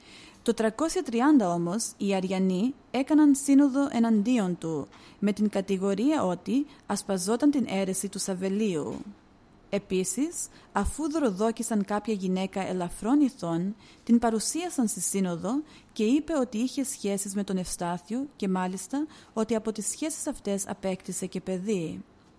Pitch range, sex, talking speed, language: 190-245 Hz, female, 125 wpm, Greek